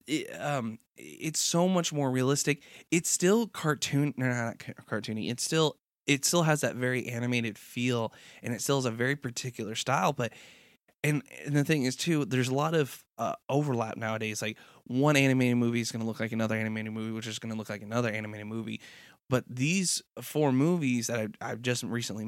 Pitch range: 115-145 Hz